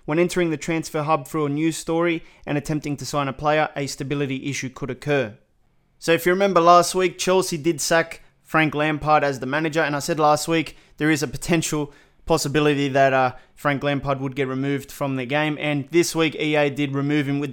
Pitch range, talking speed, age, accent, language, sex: 145-165 Hz, 210 wpm, 20-39, Australian, English, male